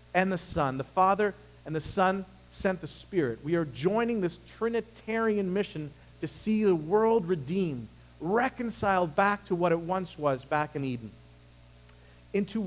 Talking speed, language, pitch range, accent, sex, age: 155 wpm, English, 135-190 Hz, American, male, 40-59